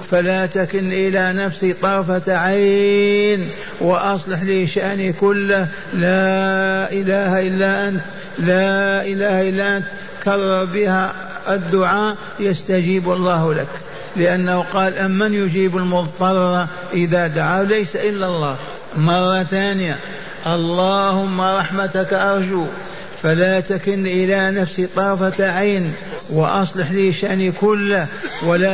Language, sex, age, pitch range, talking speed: Arabic, male, 60-79, 185-200 Hz, 105 wpm